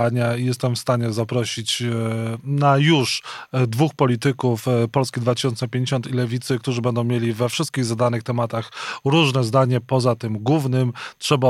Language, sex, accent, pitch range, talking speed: Polish, male, native, 125-150 Hz, 135 wpm